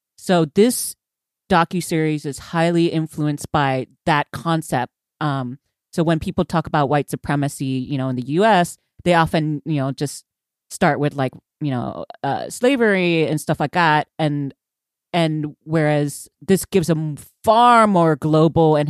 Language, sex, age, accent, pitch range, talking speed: English, female, 30-49, American, 145-185 Hz, 150 wpm